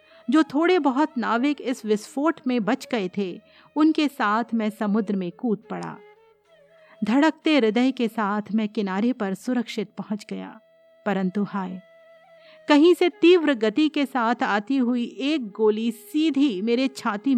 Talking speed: 145 wpm